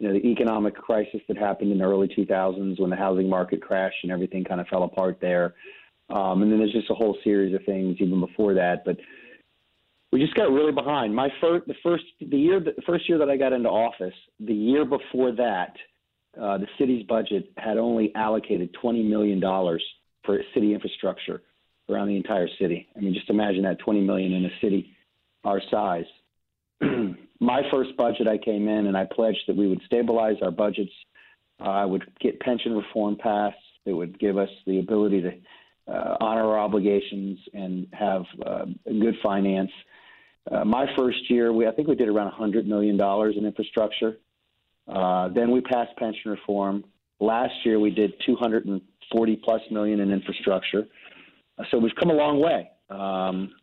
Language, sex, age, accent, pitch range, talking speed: English, male, 40-59, American, 95-115 Hz, 180 wpm